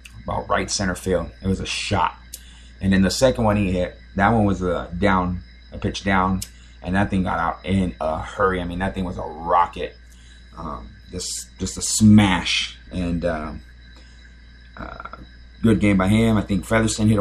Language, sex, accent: English, male, American